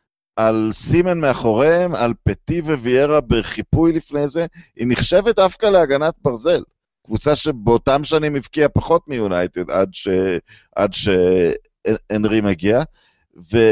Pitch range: 115-165 Hz